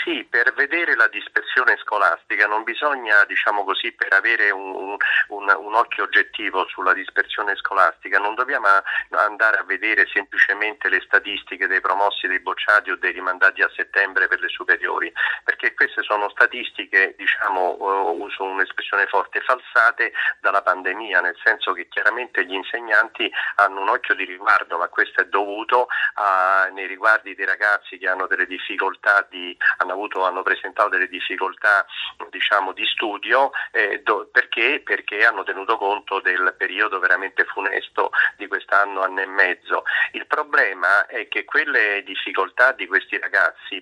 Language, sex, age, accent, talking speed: Italian, male, 40-59, native, 145 wpm